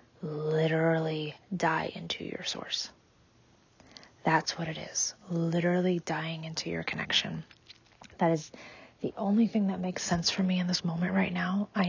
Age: 30-49